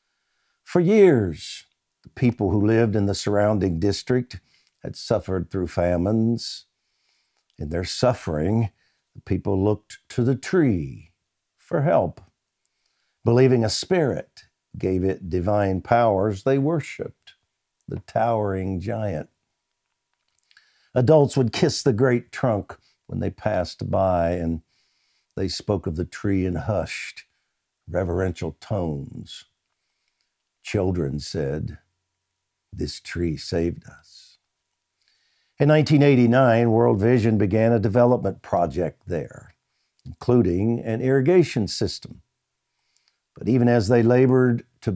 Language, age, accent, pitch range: English, 60-79, American, 95-120 Hz